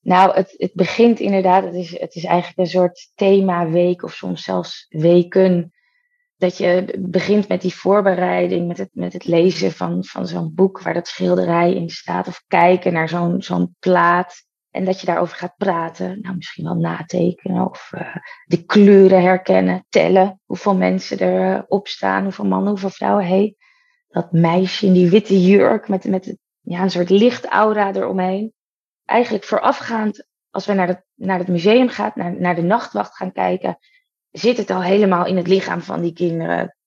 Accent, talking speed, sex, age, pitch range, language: Dutch, 170 wpm, female, 20-39, 175-205 Hz, Dutch